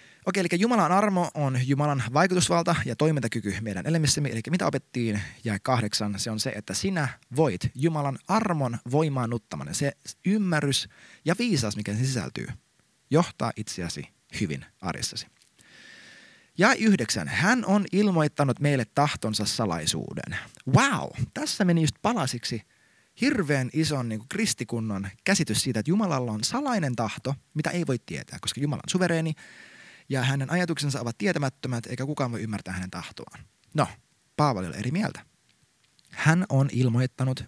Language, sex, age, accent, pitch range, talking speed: Finnish, male, 30-49, native, 115-175 Hz, 140 wpm